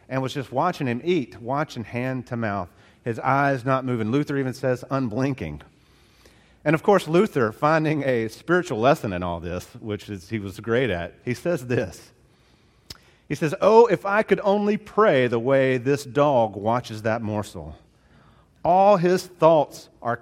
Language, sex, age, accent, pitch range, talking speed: English, male, 40-59, American, 110-175 Hz, 170 wpm